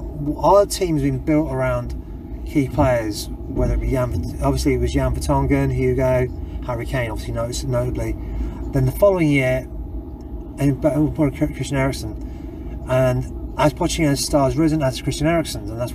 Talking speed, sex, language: 155 wpm, male, English